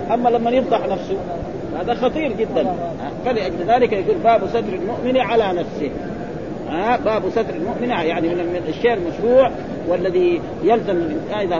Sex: male